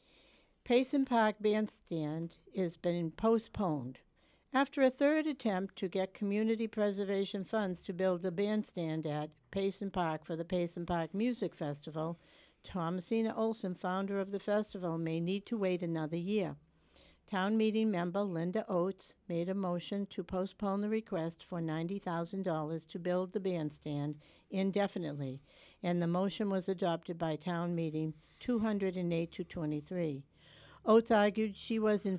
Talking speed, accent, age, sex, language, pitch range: 150 wpm, American, 60-79, female, English, 165-210 Hz